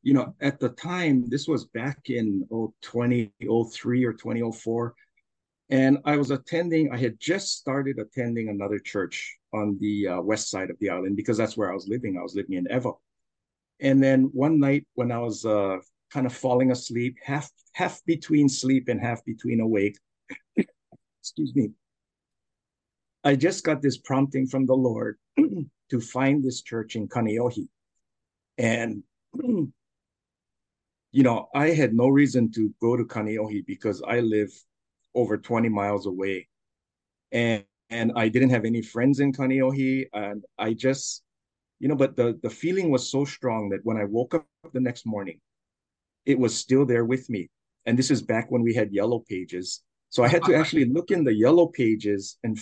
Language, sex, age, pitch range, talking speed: English, male, 50-69, 110-135 Hz, 175 wpm